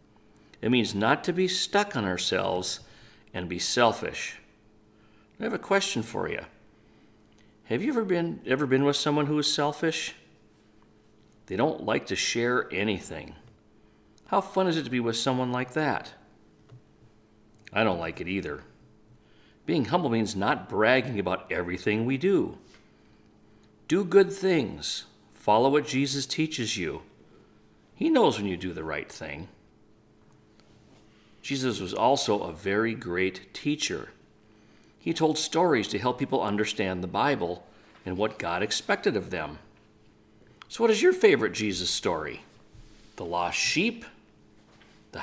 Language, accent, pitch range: English, American, 100-140 Hz